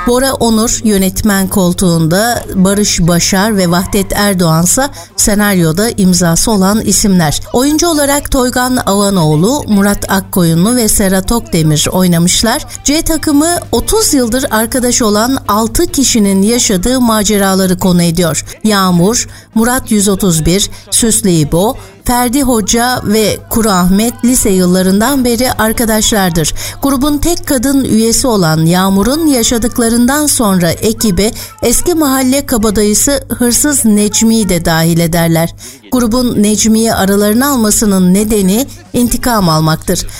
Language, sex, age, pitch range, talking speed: Turkish, female, 60-79, 190-250 Hz, 105 wpm